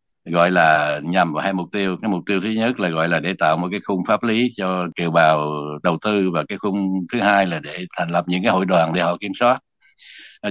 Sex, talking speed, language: male, 255 wpm, Vietnamese